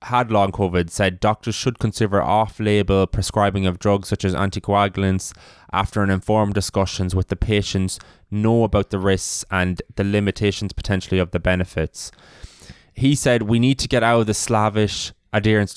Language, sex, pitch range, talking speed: English, male, 95-110 Hz, 165 wpm